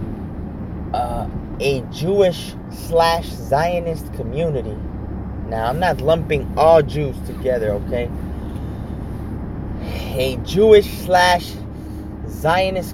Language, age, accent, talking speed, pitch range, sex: English, 30-49, American, 85 wpm, 100-150 Hz, male